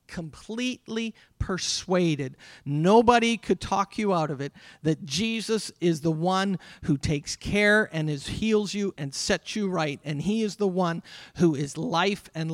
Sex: male